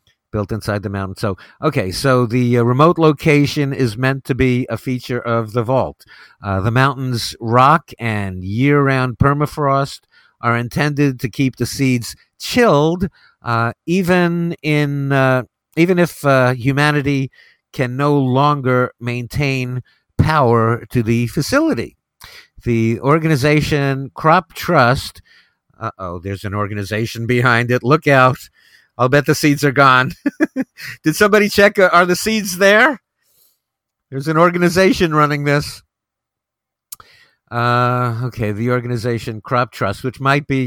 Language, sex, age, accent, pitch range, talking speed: English, male, 50-69, American, 115-145 Hz, 130 wpm